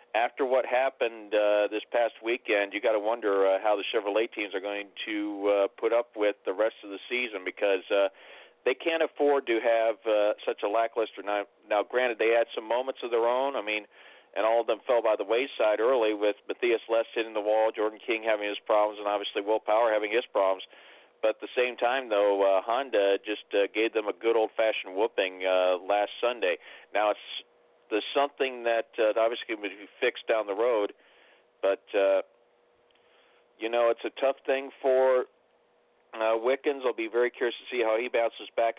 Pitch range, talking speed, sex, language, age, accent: 105-120 Hz, 205 wpm, male, English, 50-69, American